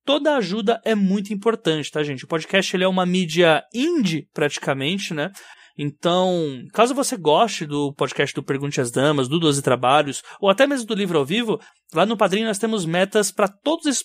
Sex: male